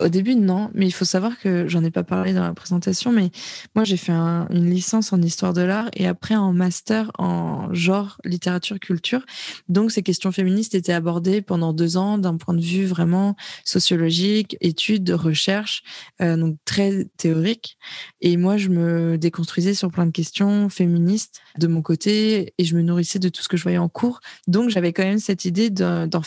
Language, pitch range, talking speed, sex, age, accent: French, 170-200 Hz, 200 wpm, female, 20-39, French